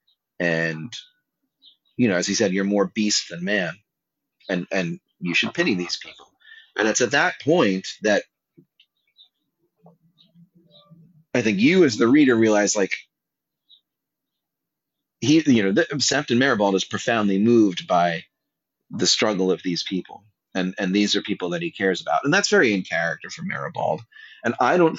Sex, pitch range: male, 100-165 Hz